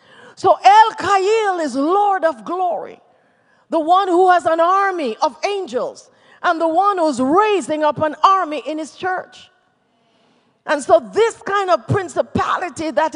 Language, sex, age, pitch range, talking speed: Swedish, female, 40-59, 335-420 Hz, 145 wpm